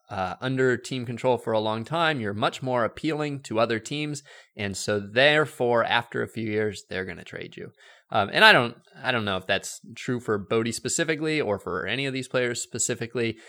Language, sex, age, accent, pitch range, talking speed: English, male, 20-39, American, 100-130 Hz, 210 wpm